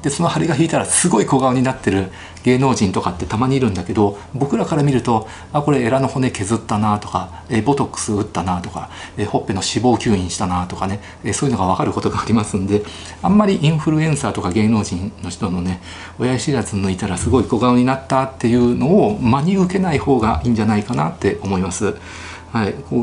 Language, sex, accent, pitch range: Japanese, male, native, 95-130 Hz